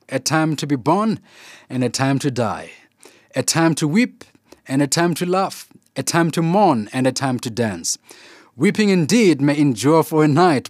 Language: English